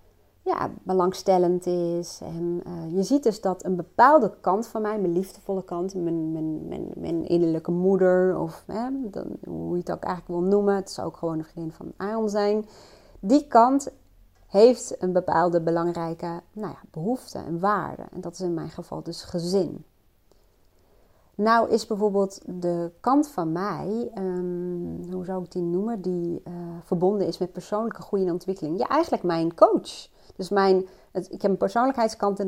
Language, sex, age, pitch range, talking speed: Dutch, female, 30-49, 170-210 Hz, 170 wpm